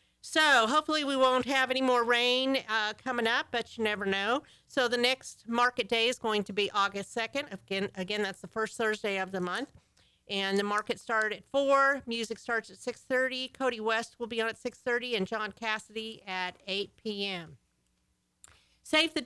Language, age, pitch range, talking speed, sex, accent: English, 50-69, 210-245 Hz, 185 wpm, female, American